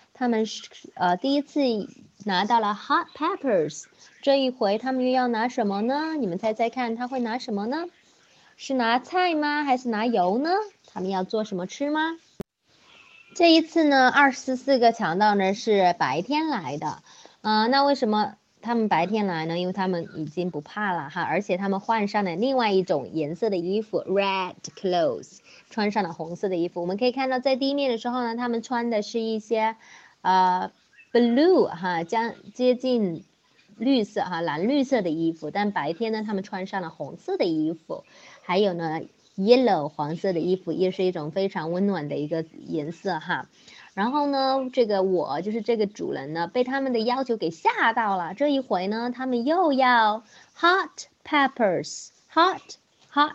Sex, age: female, 20-39